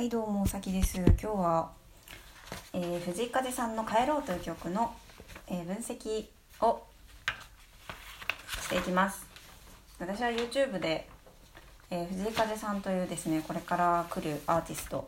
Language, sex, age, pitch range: Japanese, female, 20-39, 165-205 Hz